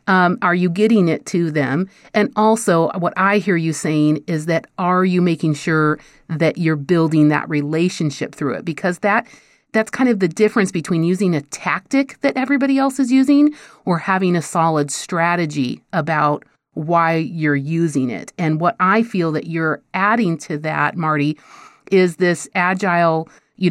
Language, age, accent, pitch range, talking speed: English, 40-59, American, 160-190 Hz, 170 wpm